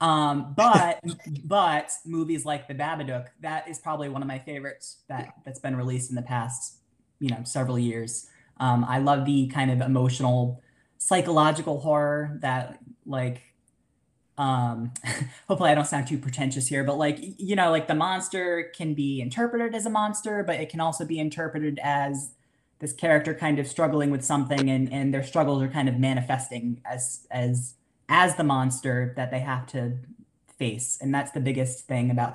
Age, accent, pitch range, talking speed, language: 20-39, American, 125-155 Hz, 175 wpm, English